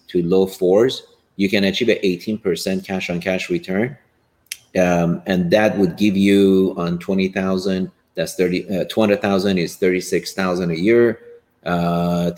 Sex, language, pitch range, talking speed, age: male, English, 95-110 Hz, 135 wpm, 30-49